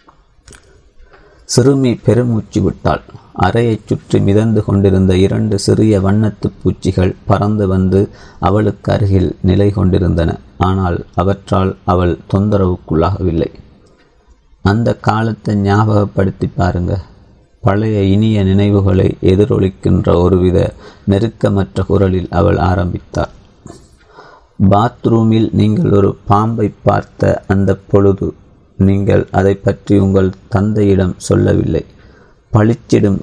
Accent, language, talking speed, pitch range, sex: native, Tamil, 85 wpm, 95-105 Hz, male